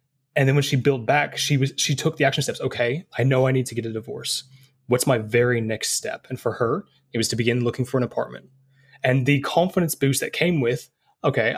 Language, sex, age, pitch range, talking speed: English, male, 20-39, 120-145 Hz, 240 wpm